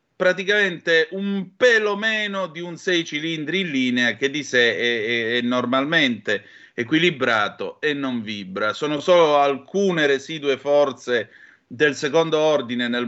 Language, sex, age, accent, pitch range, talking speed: Italian, male, 30-49, native, 120-165 Hz, 140 wpm